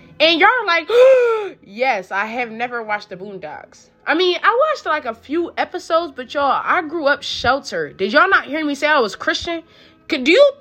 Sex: female